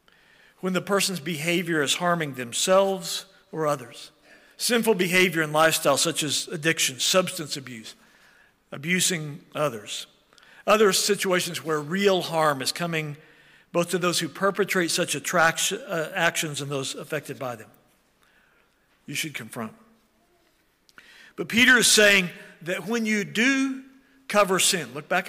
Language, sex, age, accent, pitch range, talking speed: English, male, 50-69, American, 155-205 Hz, 130 wpm